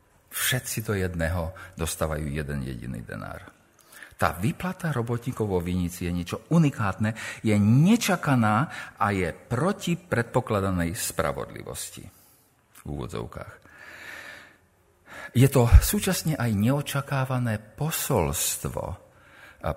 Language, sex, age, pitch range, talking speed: Slovak, male, 50-69, 90-150 Hz, 95 wpm